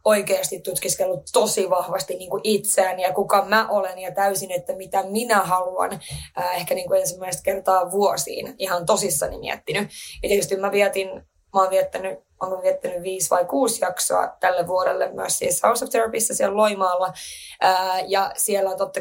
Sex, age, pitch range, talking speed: female, 20-39, 180-215 Hz, 160 wpm